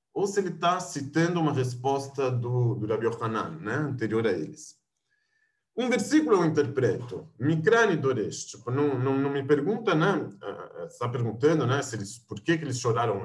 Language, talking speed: Portuguese, 160 wpm